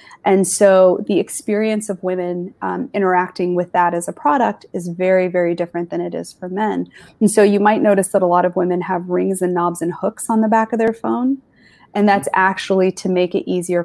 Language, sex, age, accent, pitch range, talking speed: English, female, 20-39, American, 175-200 Hz, 220 wpm